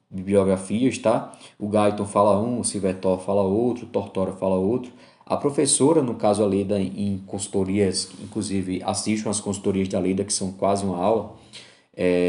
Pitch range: 100-125 Hz